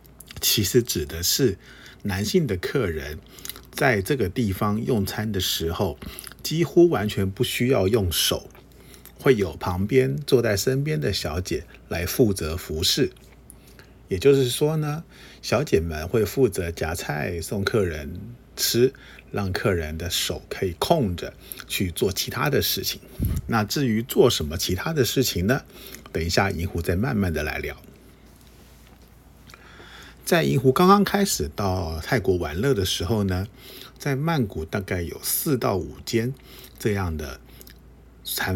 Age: 50-69